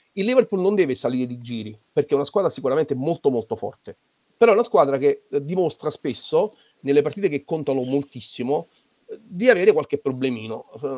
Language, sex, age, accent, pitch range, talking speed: Italian, male, 40-59, native, 130-185 Hz, 170 wpm